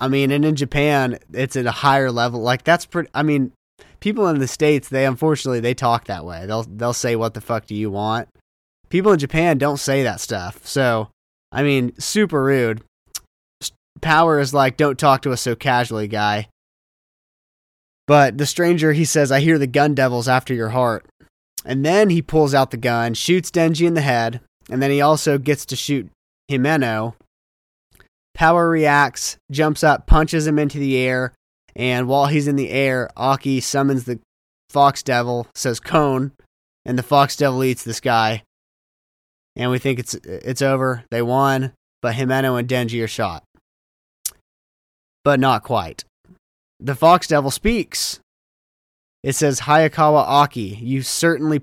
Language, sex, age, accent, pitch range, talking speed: English, male, 20-39, American, 115-145 Hz, 170 wpm